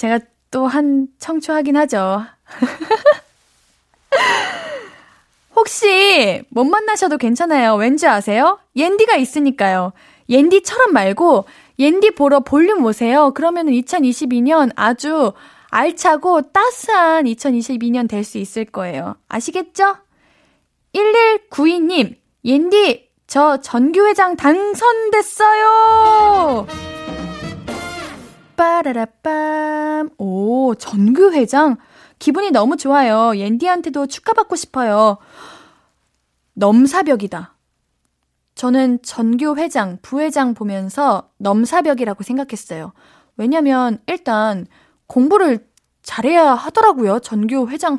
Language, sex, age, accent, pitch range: Korean, female, 10-29, native, 230-335 Hz